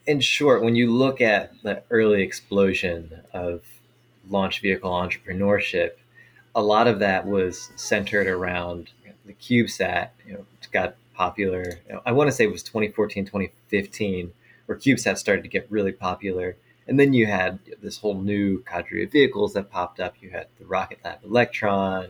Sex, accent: male, American